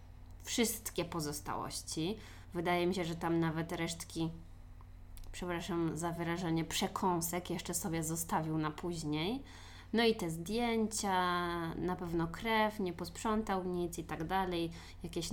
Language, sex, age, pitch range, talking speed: Polish, female, 20-39, 165-215 Hz, 125 wpm